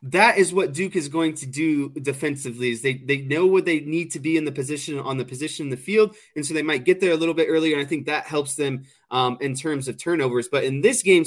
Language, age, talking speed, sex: English, 20-39, 275 wpm, male